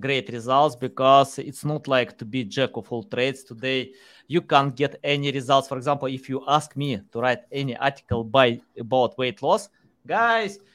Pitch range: 125-155 Hz